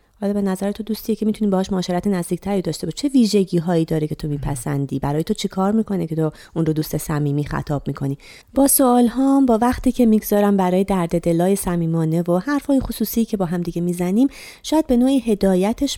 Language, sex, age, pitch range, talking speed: Persian, female, 30-49, 155-220 Hz, 205 wpm